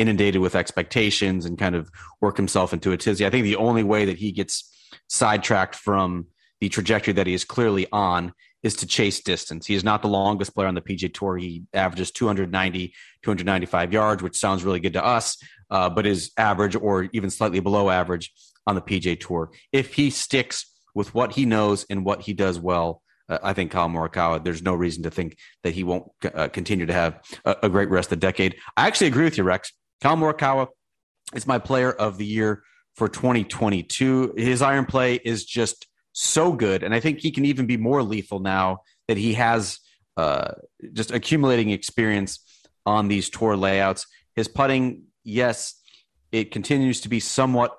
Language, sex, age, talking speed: English, male, 30-49, 195 wpm